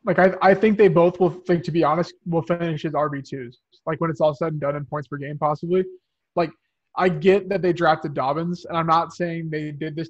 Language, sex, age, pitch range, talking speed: English, male, 20-39, 145-170 Hz, 245 wpm